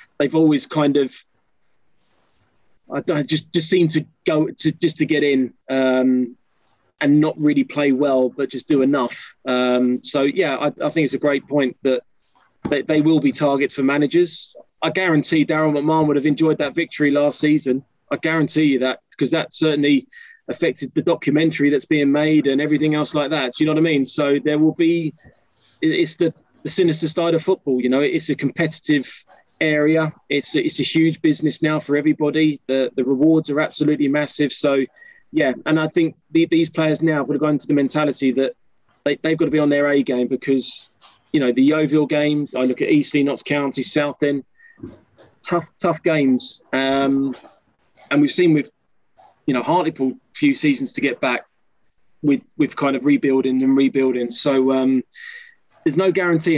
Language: English